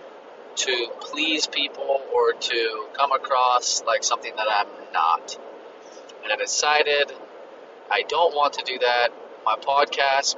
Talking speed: 135 wpm